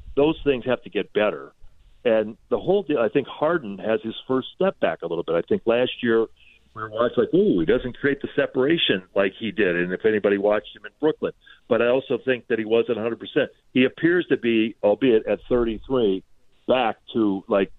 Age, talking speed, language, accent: 40-59, 215 wpm, English, American